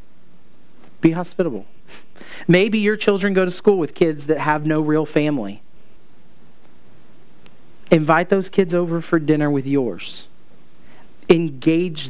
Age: 40-59